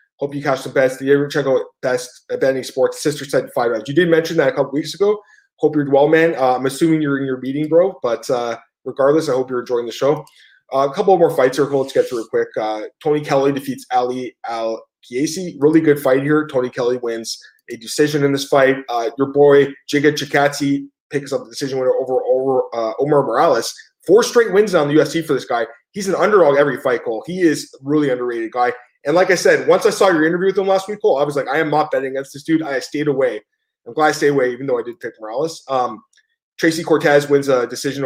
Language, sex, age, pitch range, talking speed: English, male, 20-39, 135-185 Hz, 245 wpm